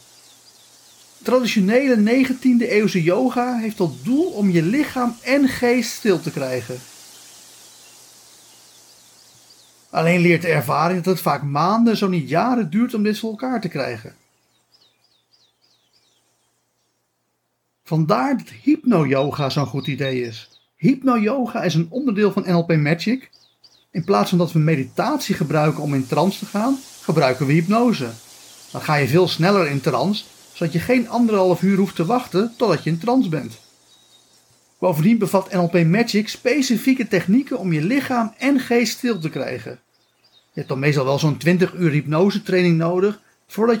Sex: male